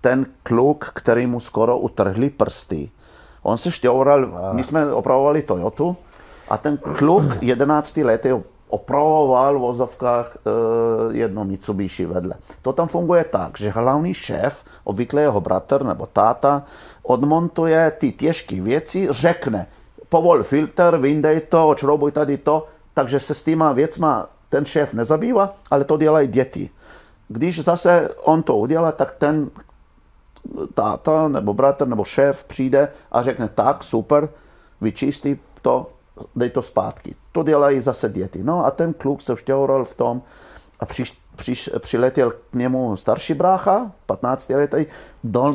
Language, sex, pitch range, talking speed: Czech, male, 115-155 Hz, 140 wpm